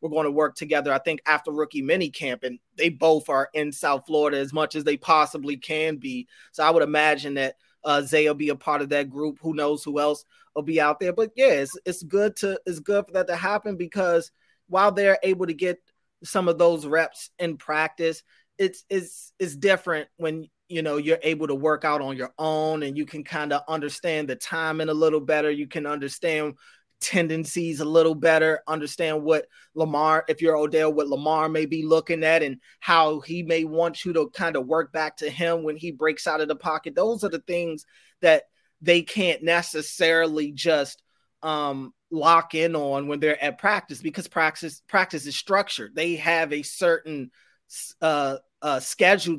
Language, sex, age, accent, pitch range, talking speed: English, male, 30-49, American, 150-170 Hz, 200 wpm